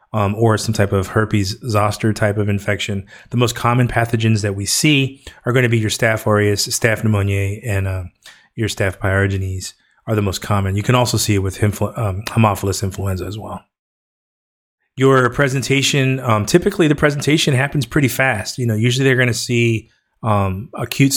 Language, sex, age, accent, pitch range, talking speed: English, male, 30-49, American, 105-120 Hz, 185 wpm